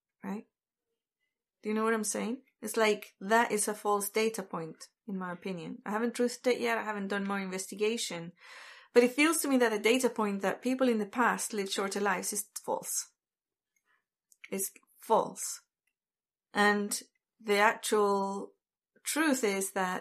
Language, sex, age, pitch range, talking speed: English, female, 30-49, 200-245 Hz, 165 wpm